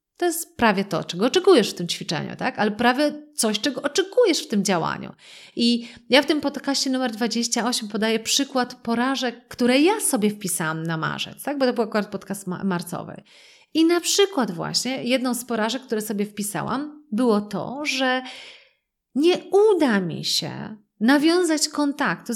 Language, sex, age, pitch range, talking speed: Polish, female, 30-49, 205-290 Hz, 165 wpm